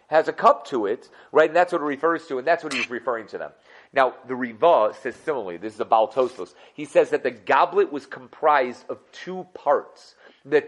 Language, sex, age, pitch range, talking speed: English, male, 40-59, 145-225 Hz, 220 wpm